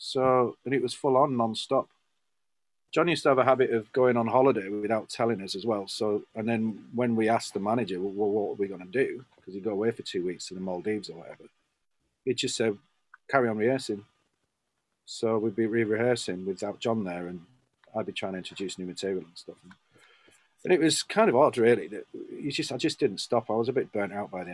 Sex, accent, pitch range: male, British, 95-115 Hz